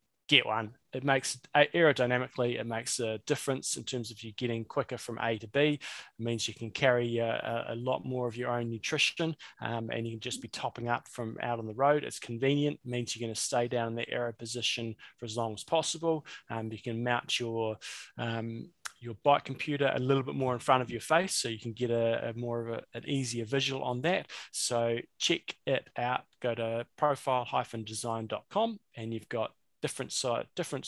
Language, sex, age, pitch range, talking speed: English, male, 20-39, 115-135 Hz, 210 wpm